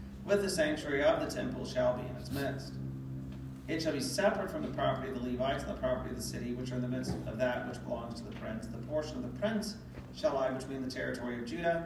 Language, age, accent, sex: English, 40-59, American, male